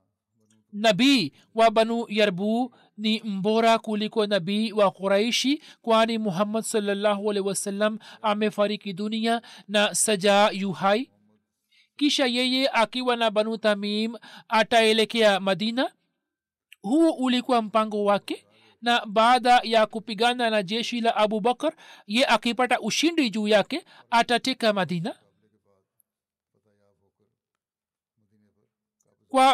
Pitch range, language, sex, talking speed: 205-235 Hz, Swahili, male, 95 wpm